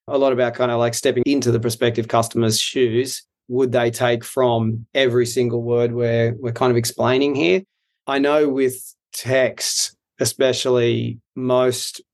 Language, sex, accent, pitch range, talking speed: English, male, Australian, 120-130 Hz, 155 wpm